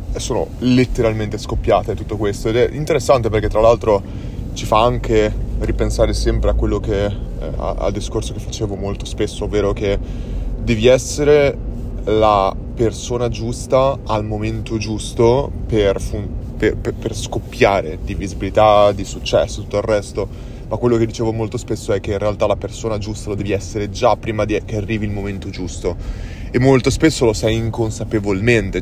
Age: 20-39